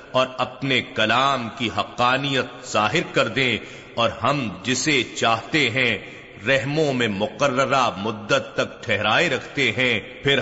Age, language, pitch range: 40-59, Urdu, 115-135 Hz